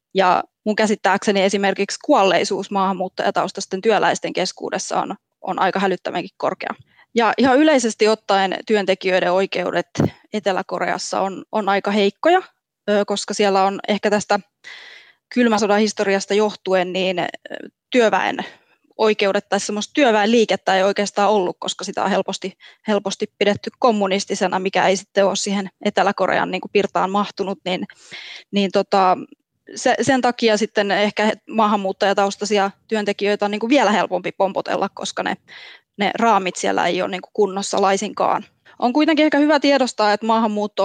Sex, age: female, 20-39